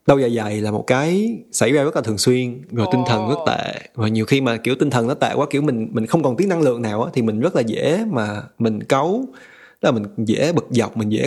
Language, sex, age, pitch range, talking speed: Vietnamese, male, 20-39, 115-150 Hz, 280 wpm